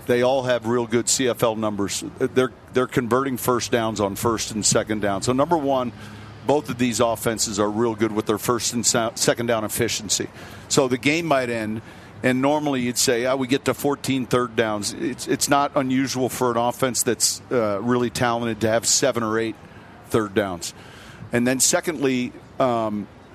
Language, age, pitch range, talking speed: English, 50-69, 115-130 Hz, 190 wpm